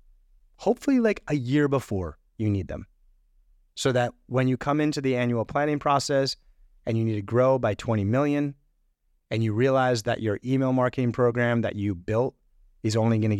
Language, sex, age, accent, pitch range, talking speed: English, male, 30-49, American, 105-130 Hz, 180 wpm